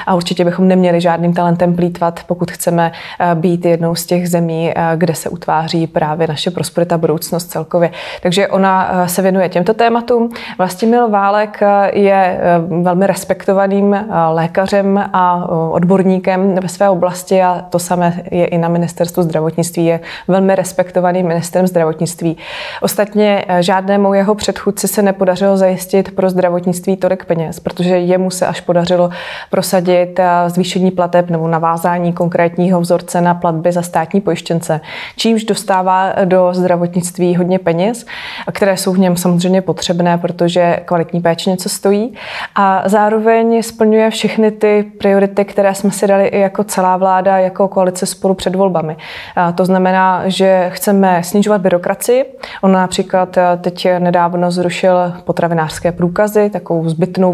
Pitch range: 175-195 Hz